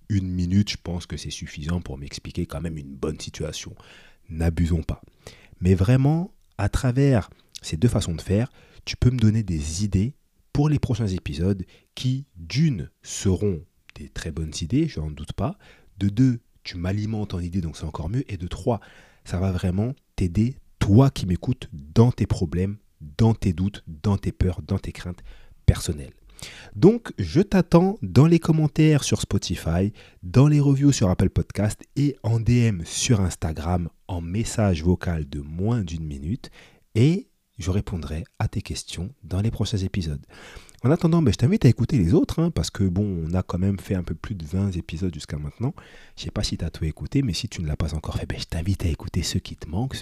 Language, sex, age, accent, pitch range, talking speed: French, male, 30-49, French, 85-115 Hz, 200 wpm